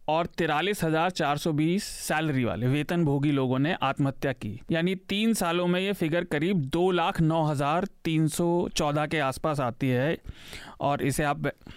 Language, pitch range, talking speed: Hindi, 135-170 Hz, 125 wpm